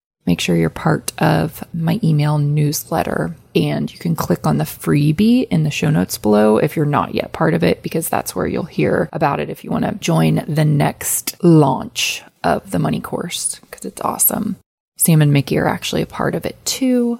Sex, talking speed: female, 205 wpm